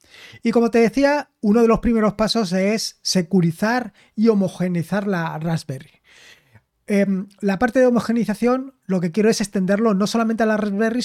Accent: Spanish